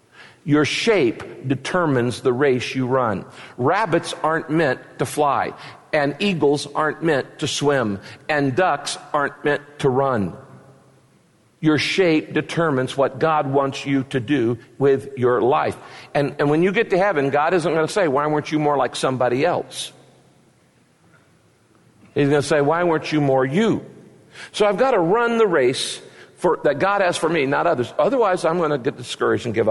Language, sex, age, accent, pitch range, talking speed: English, male, 50-69, American, 140-190 Hz, 175 wpm